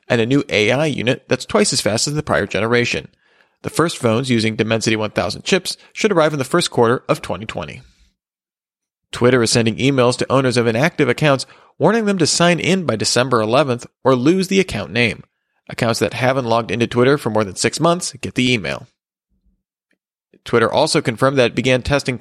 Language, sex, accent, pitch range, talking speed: English, male, American, 115-155 Hz, 190 wpm